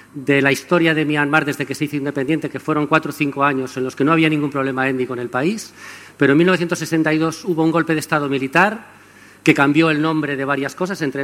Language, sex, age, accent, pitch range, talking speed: Spanish, male, 40-59, Spanish, 140-180 Hz, 235 wpm